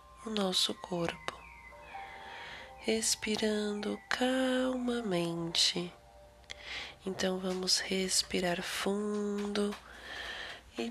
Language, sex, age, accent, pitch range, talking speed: Portuguese, female, 20-39, Brazilian, 175-220 Hz, 55 wpm